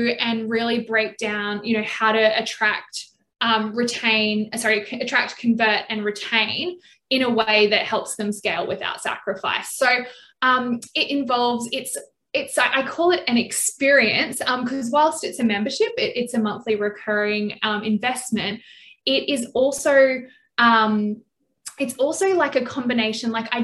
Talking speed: 150 wpm